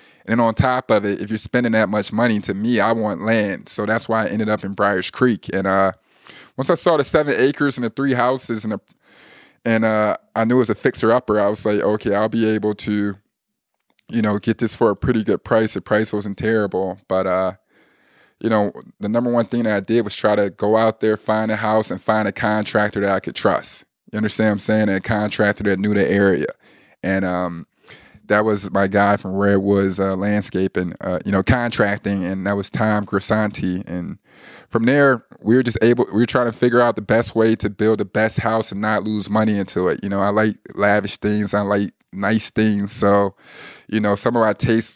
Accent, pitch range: American, 100-115 Hz